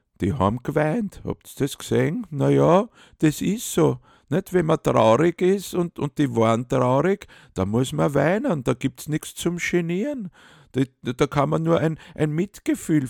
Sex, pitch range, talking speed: male, 105-165 Hz, 185 wpm